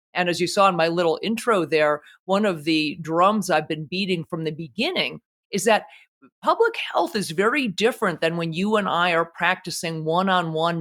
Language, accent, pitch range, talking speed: English, American, 180-235 Hz, 190 wpm